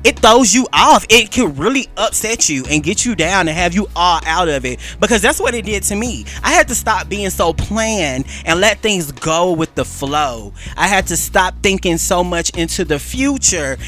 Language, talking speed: English, 220 wpm